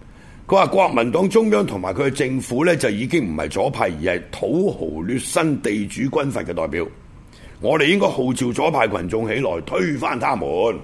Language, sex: Chinese, male